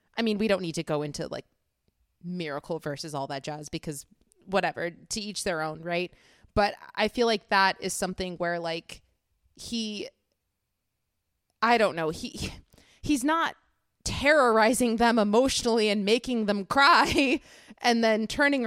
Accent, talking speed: American, 150 wpm